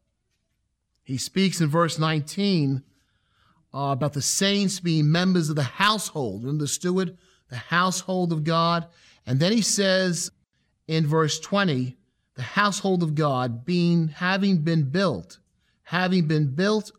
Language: English